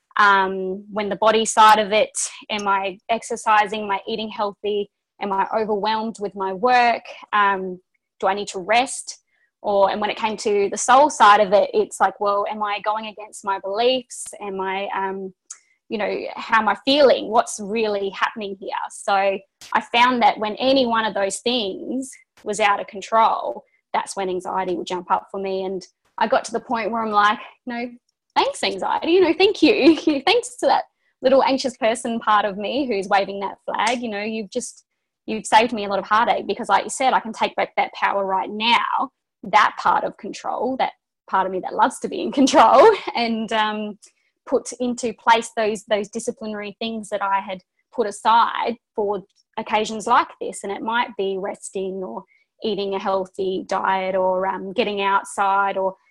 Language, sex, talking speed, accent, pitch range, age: English, female, 195 wpm, Australian, 195-235 Hz, 20-39